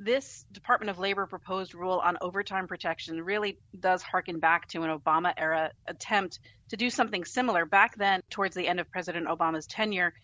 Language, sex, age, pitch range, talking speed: English, female, 30-49, 170-205 Hz, 175 wpm